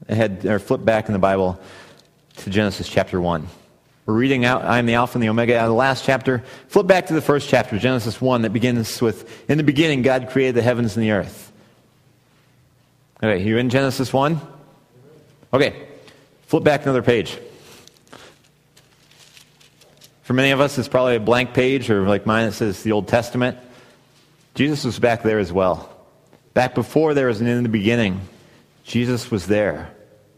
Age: 30-49